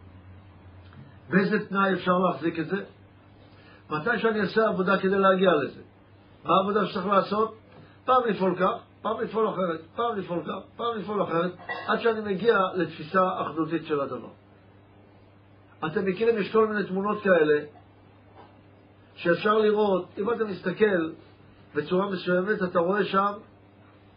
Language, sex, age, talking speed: Hebrew, male, 50-69, 130 wpm